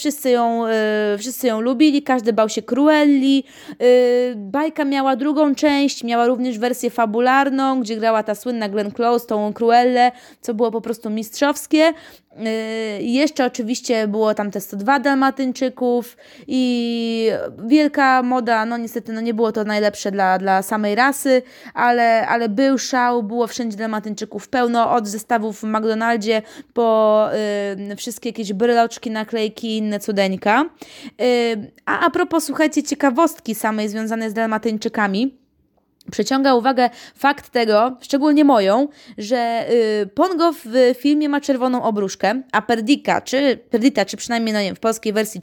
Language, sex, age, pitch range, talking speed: Polish, female, 20-39, 220-270 Hz, 145 wpm